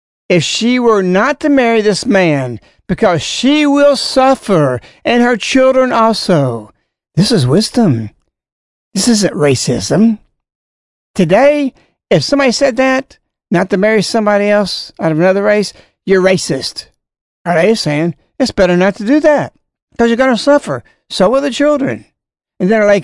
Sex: male